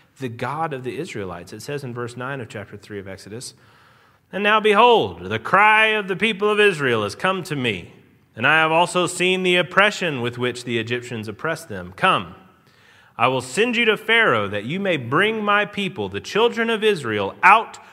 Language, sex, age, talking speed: English, male, 30-49, 200 wpm